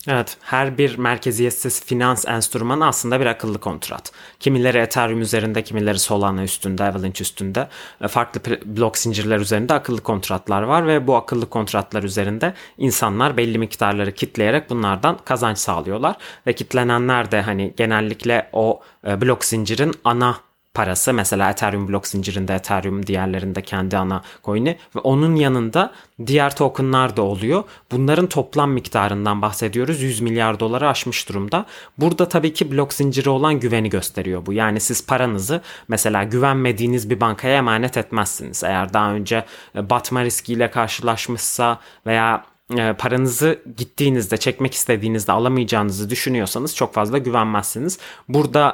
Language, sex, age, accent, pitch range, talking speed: Turkish, male, 30-49, native, 105-130 Hz, 130 wpm